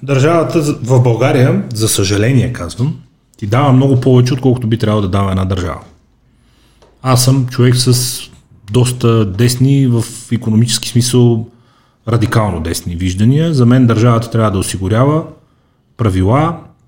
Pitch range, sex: 95-125 Hz, male